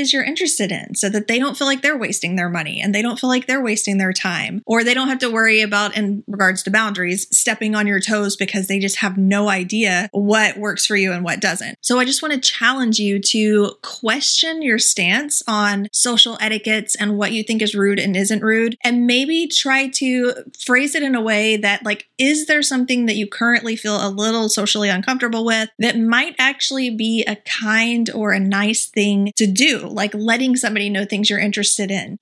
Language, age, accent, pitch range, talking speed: English, 30-49, American, 200-240 Hz, 215 wpm